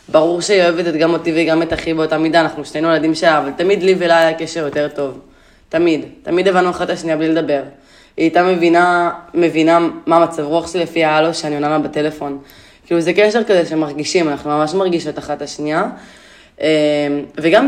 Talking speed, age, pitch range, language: 185 wpm, 20-39, 150-175 Hz, Hebrew